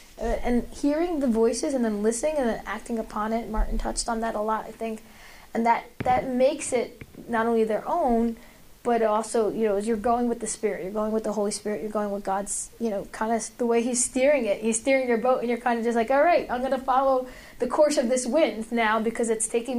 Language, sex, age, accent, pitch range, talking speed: English, female, 10-29, American, 215-245 Hz, 250 wpm